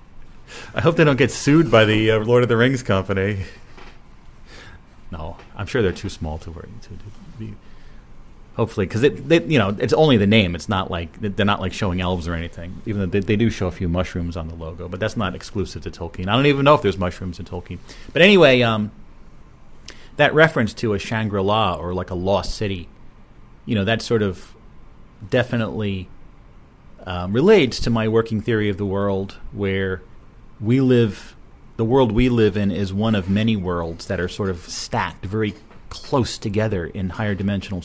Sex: male